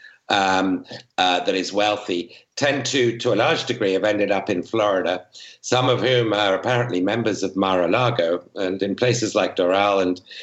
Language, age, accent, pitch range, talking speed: English, 60-79, British, 100-125 Hz, 175 wpm